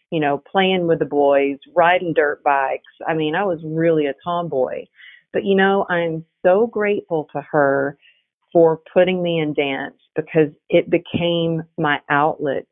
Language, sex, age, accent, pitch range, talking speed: English, female, 40-59, American, 140-165 Hz, 160 wpm